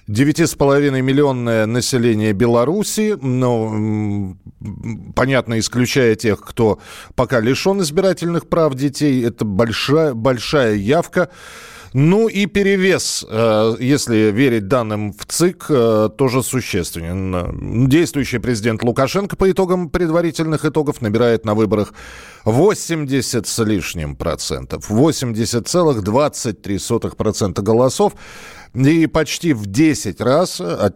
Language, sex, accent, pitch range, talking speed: Russian, male, native, 110-155 Hz, 95 wpm